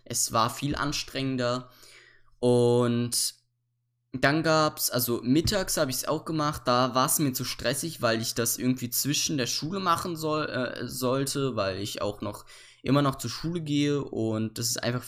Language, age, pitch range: German, 20-39, 120-140 Hz